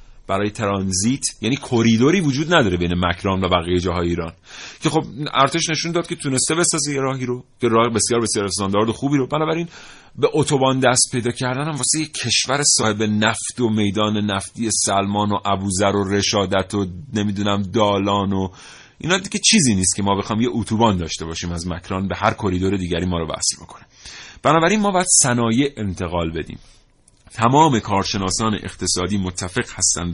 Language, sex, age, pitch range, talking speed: Persian, male, 30-49, 100-140 Hz, 170 wpm